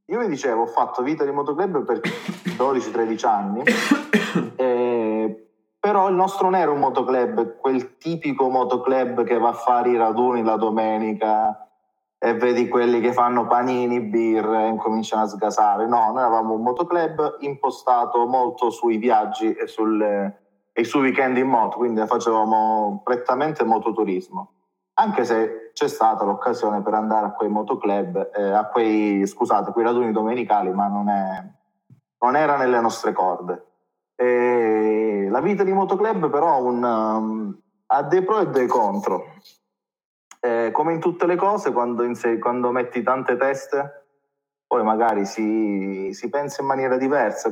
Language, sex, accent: Italian, male, native